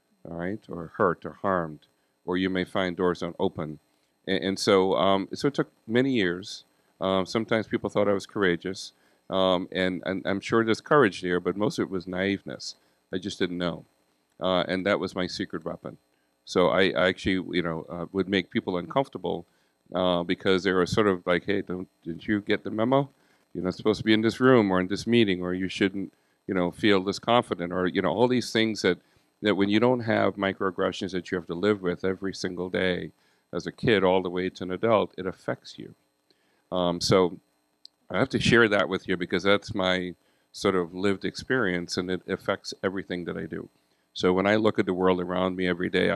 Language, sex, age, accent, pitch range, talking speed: English, male, 40-59, American, 90-100 Hz, 220 wpm